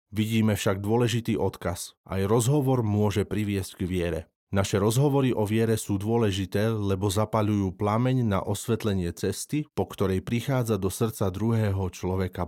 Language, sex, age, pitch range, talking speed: Slovak, male, 30-49, 95-115 Hz, 140 wpm